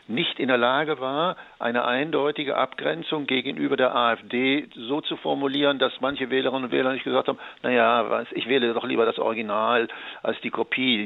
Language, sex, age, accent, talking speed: German, male, 50-69, German, 180 wpm